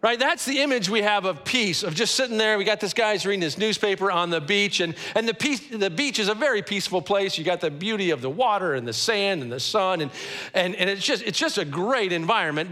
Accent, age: American, 50-69